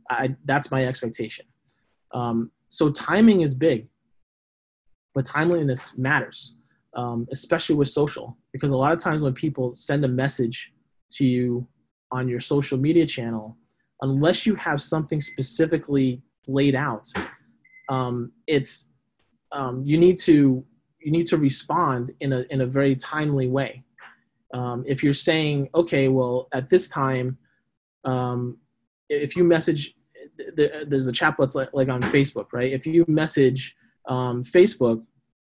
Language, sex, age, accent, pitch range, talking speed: English, male, 20-39, American, 125-150 Hz, 140 wpm